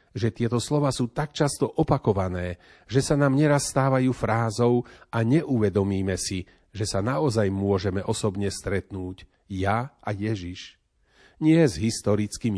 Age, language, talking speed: 40-59, Slovak, 135 wpm